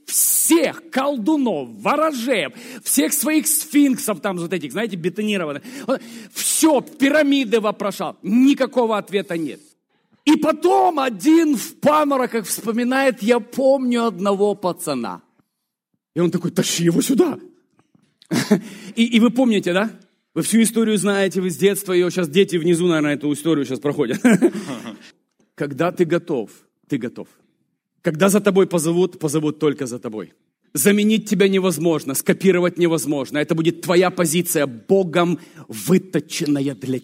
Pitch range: 180-265 Hz